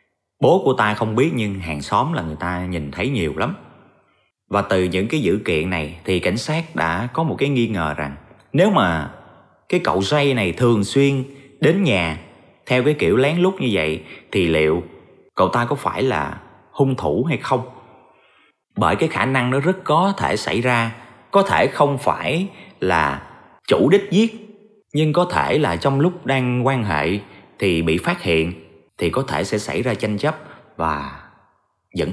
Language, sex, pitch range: Vietnamese, male, 90-135 Hz